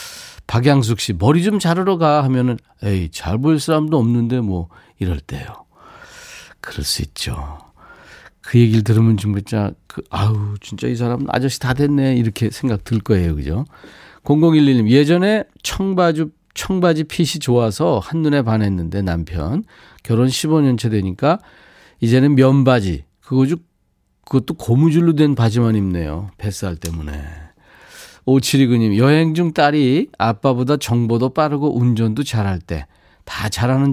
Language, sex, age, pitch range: Korean, male, 40-59, 100-145 Hz